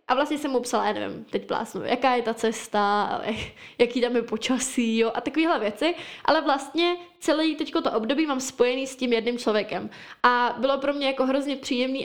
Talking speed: 200 wpm